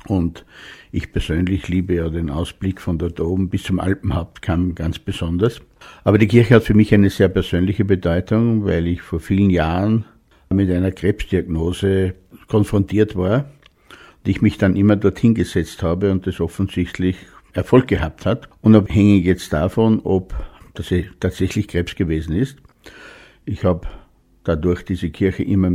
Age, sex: 60-79, male